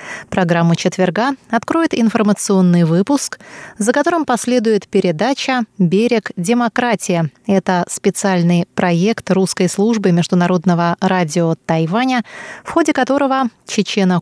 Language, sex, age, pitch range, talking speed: Russian, female, 20-39, 185-235 Hz, 95 wpm